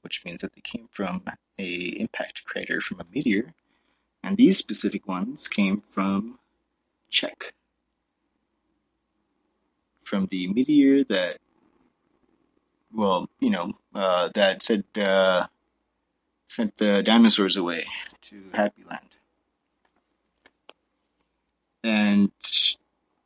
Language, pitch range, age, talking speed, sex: English, 90-110 Hz, 30-49, 100 wpm, male